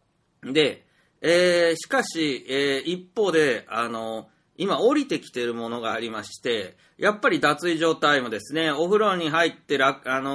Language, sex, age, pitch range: Japanese, male, 40-59, 120-175 Hz